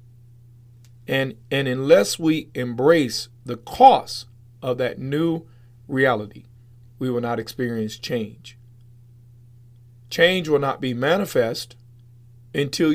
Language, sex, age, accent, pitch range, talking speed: English, male, 40-59, American, 120-145 Hz, 100 wpm